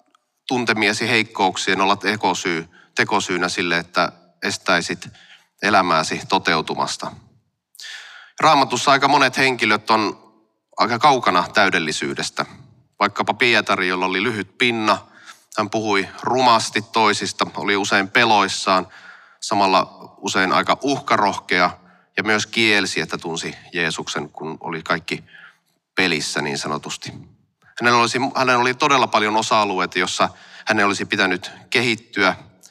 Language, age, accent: Finnish, 30-49, native